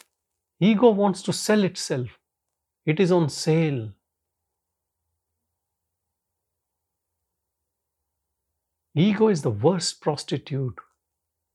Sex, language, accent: male, English, Indian